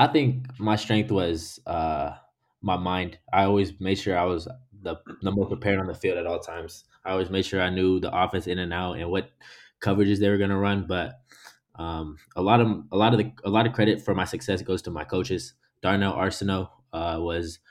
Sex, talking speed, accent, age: male, 225 wpm, American, 20-39